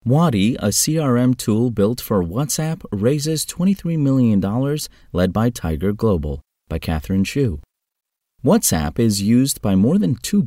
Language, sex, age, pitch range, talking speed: English, male, 30-49, 90-120 Hz, 140 wpm